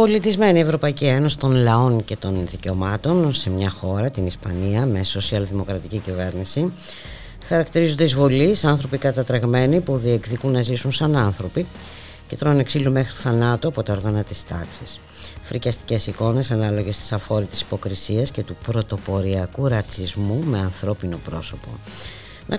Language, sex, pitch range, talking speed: Greek, female, 95-135 Hz, 135 wpm